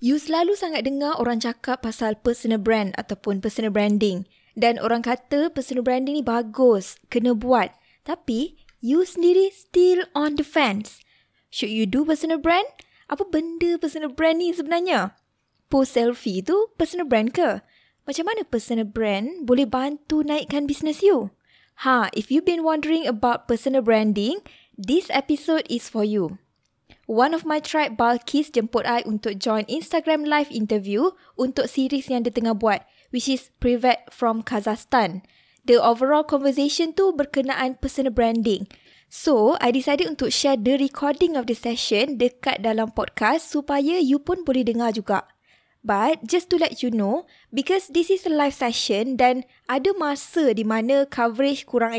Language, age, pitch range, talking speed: Malay, 20-39, 235-310 Hz, 155 wpm